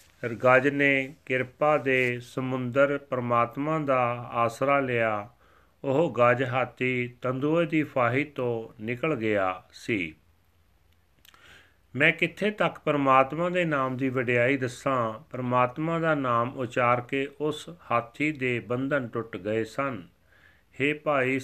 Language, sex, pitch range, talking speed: Punjabi, male, 115-140 Hz, 115 wpm